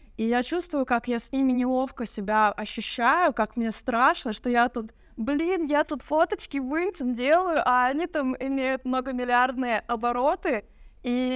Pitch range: 220-270 Hz